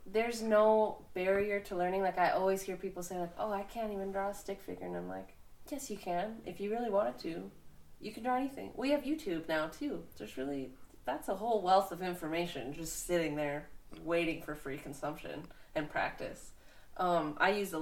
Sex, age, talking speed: female, 20-39, 205 wpm